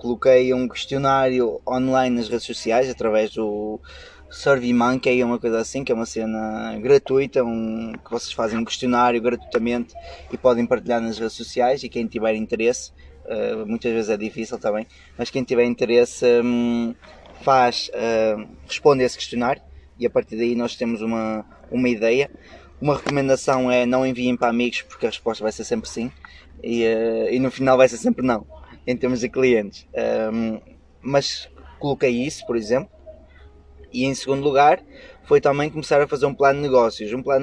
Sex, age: male, 20-39